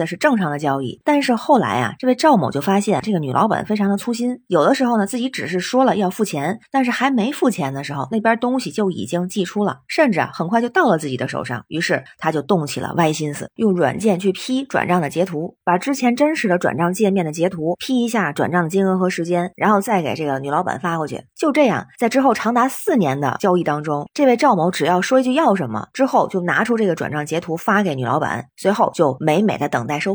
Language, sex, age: Chinese, female, 20-39